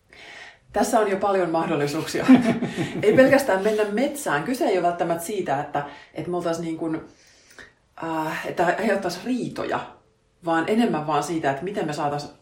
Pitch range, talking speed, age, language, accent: 155-215 Hz, 140 wpm, 30-49, Finnish, native